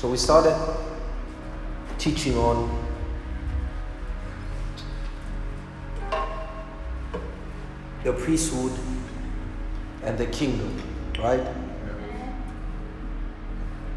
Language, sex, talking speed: English, male, 45 wpm